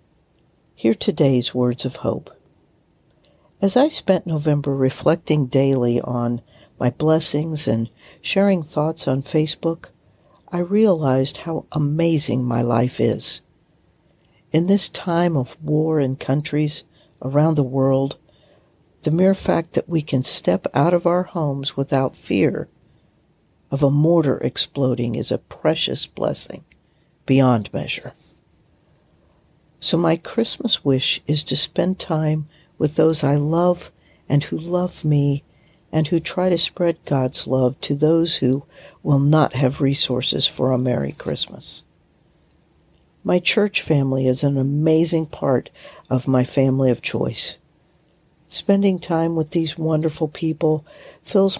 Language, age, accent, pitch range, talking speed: English, 60-79, American, 135-165 Hz, 130 wpm